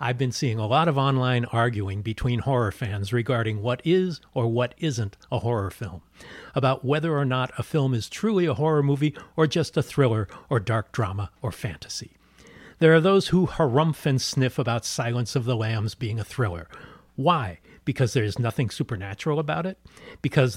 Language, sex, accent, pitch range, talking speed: English, male, American, 115-150 Hz, 185 wpm